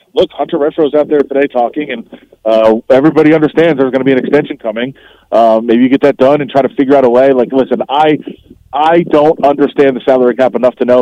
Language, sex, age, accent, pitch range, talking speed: English, male, 30-49, American, 130-160 Hz, 235 wpm